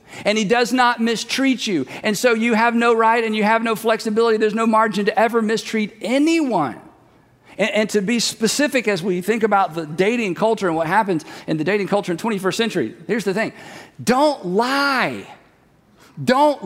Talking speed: 185 wpm